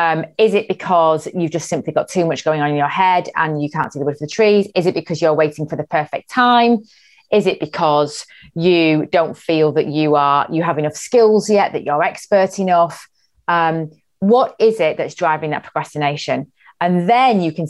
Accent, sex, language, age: British, female, English, 30-49